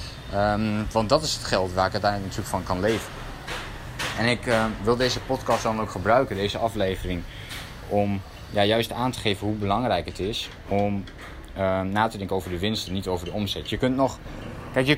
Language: Dutch